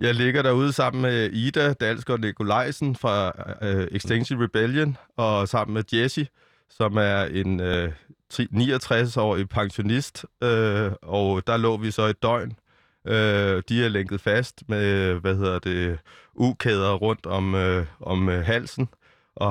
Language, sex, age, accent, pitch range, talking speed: Danish, male, 30-49, native, 105-125 Hz, 150 wpm